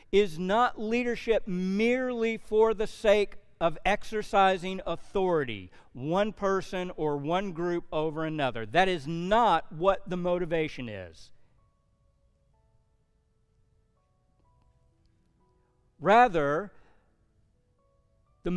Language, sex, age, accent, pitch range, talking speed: English, male, 50-69, American, 160-220 Hz, 85 wpm